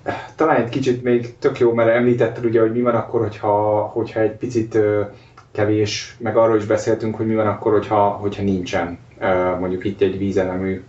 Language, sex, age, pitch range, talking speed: Hungarian, male, 20-39, 100-120 Hz, 180 wpm